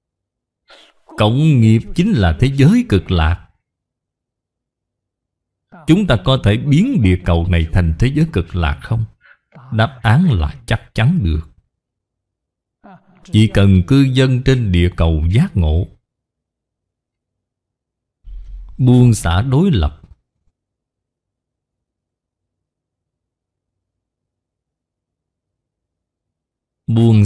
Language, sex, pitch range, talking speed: Vietnamese, male, 90-125 Hz, 90 wpm